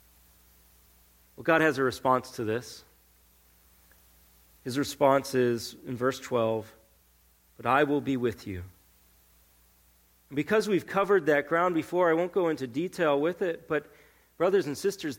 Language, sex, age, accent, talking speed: English, male, 40-59, American, 145 wpm